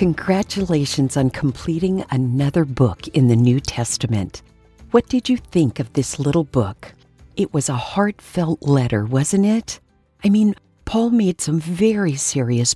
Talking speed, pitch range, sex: 145 wpm, 125-170 Hz, female